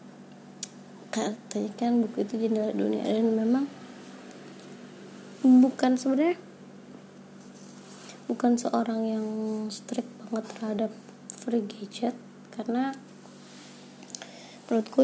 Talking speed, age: 80 wpm, 20-39